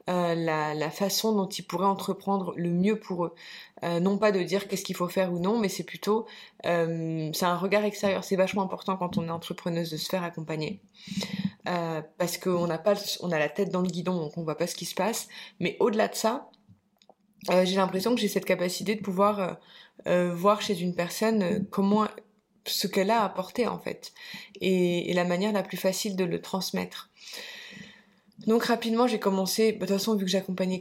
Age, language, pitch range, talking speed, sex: 20-39, French, 180-205 Hz, 210 wpm, female